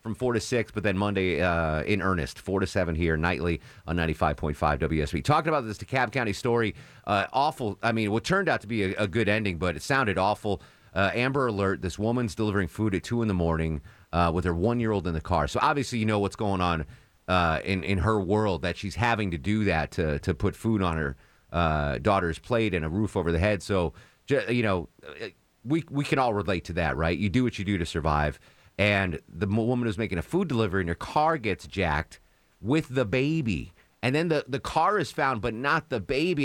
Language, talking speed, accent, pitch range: English, 225 wpm, American, 90-115 Hz